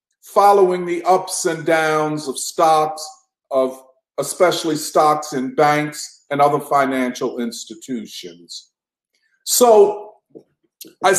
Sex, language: male, English